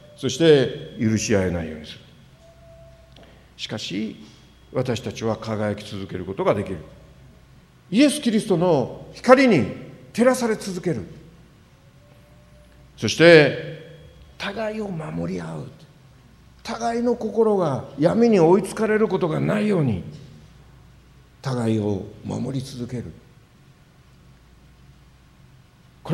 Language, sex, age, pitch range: Japanese, male, 60-79, 110-180 Hz